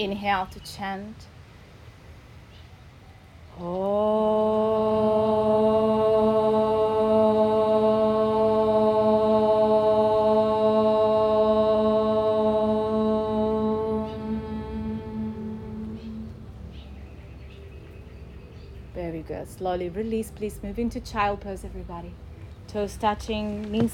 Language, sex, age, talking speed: English, female, 30-49, 40 wpm